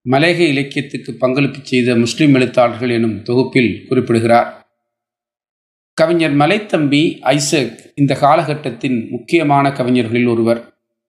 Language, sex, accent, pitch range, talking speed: Tamil, male, native, 120-145 Hz, 90 wpm